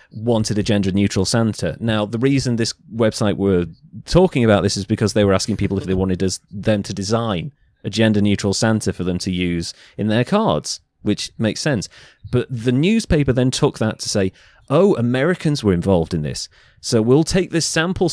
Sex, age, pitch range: male, 30-49, 100-130 Hz